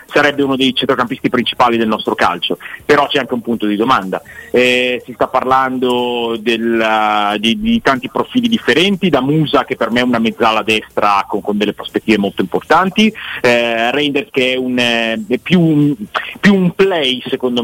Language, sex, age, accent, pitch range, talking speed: Italian, male, 30-49, native, 110-135 Hz, 165 wpm